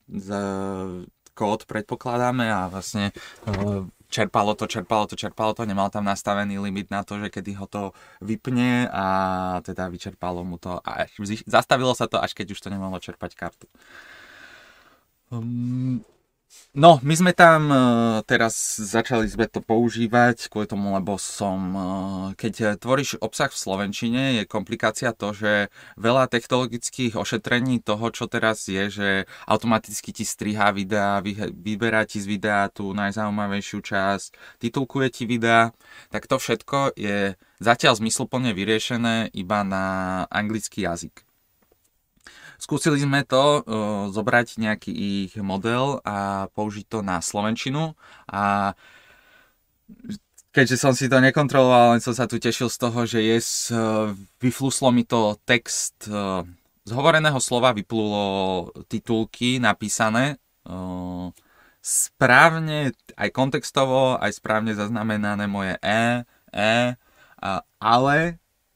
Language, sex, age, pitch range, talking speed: Slovak, male, 20-39, 100-120 Hz, 125 wpm